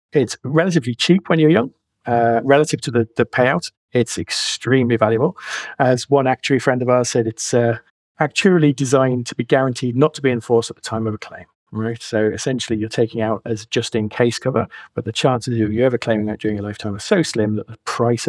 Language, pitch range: English, 110-140 Hz